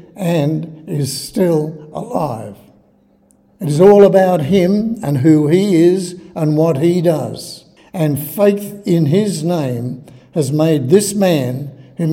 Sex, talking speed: male, 135 wpm